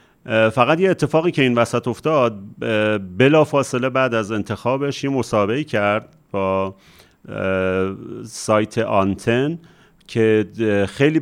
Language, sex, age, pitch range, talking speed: Persian, male, 40-59, 100-125 Hz, 105 wpm